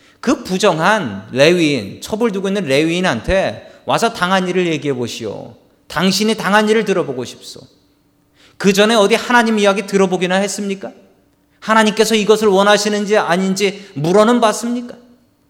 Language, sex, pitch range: Korean, male, 135-210 Hz